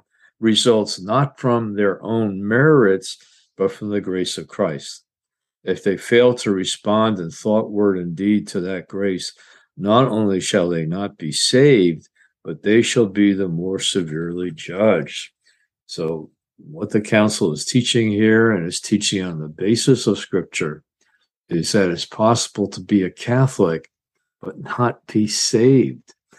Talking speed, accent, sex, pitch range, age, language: 150 wpm, American, male, 90-110 Hz, 50-69, English